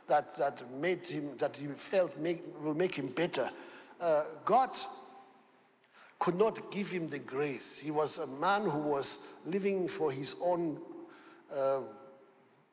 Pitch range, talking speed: 150-205 Hz, 140 wpm